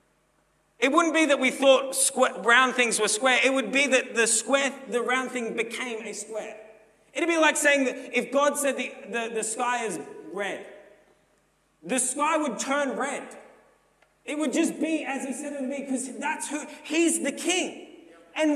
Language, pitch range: English, 230-300 Hz